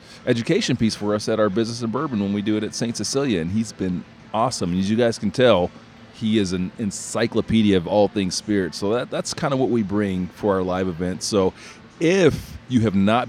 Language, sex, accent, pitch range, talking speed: English, male, American, 85-115 Hz, 225 wpm